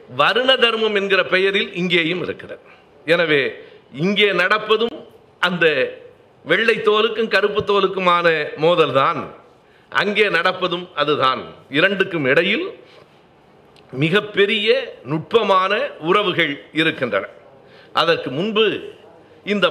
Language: Tamil